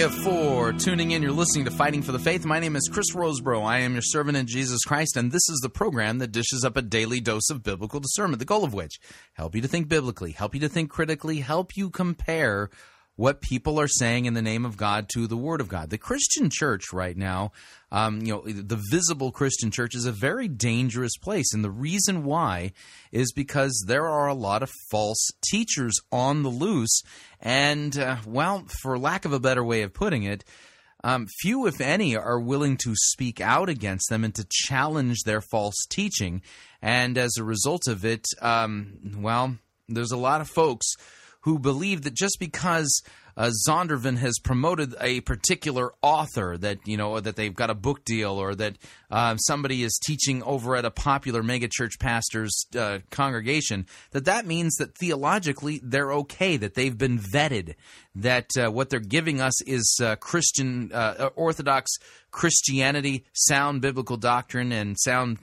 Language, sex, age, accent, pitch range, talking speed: English, male, 30-49, American, 110-150 Hz, 190 wpm